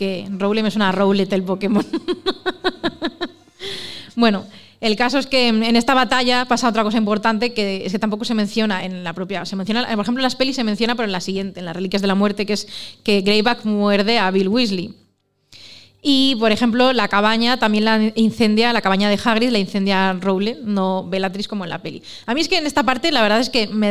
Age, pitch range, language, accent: 20-39, 195-245 Hz, Spanish, Spanish